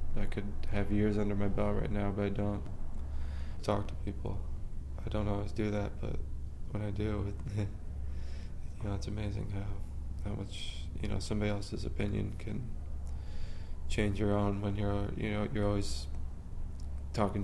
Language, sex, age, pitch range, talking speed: English, male, 20-39, 75-105 Hz, 170 wpm